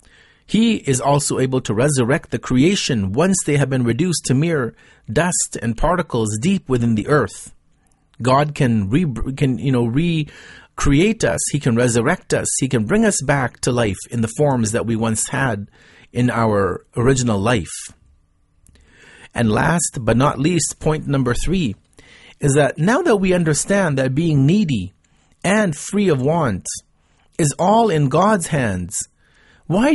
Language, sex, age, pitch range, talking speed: English, male, 40-59, 120-160 Hz, 150 wpm